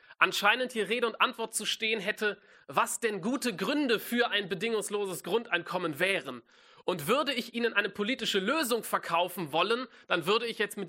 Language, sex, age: German, male, 30-49